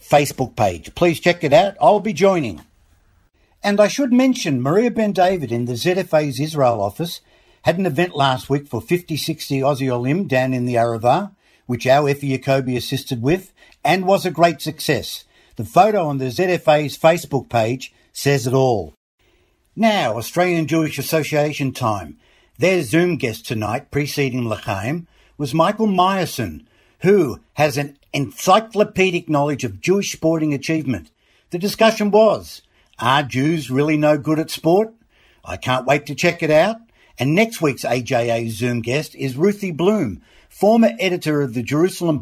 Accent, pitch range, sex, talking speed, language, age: Australian, 125-175 Hz, male, 155 wpm, English, 60-79